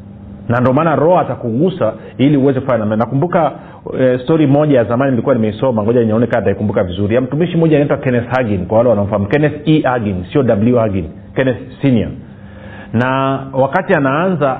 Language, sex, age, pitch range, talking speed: Swahili, male, 40-59, 115-150 Hz, 150 wpm